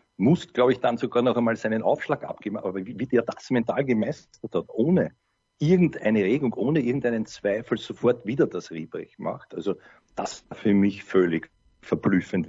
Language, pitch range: German, 110-140 Hz